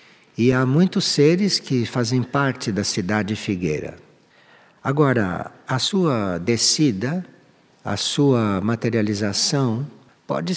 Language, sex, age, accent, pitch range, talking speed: Portuguese, male, 60-79, Brazilian, 110-150 Hz, 100 wpm